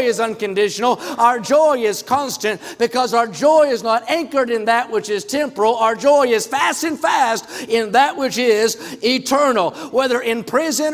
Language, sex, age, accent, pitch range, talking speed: English, male, 50-69, American, 205-270 Hz, 170 wpm